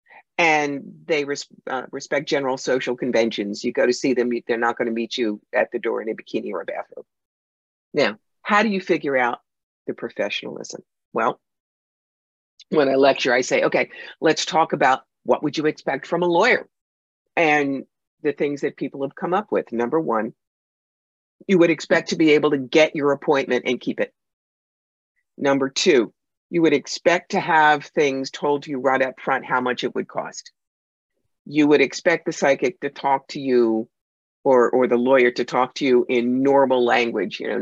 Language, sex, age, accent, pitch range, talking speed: English, female, 50-69, American, 125-155 Hz, 185 wpm